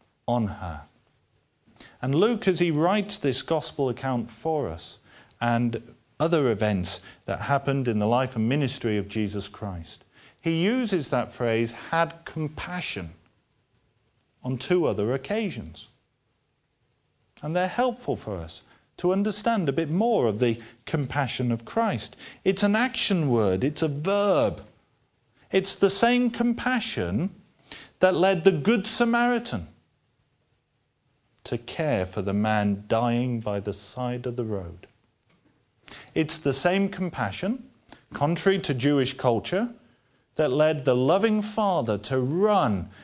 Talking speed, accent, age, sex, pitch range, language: 130 wpm, British, 40-59, male, 110-165 Hz, English